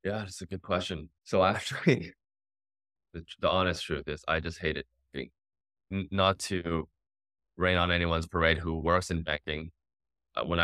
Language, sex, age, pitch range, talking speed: English, male, 20-39, 80-95 Hz, 150 wpm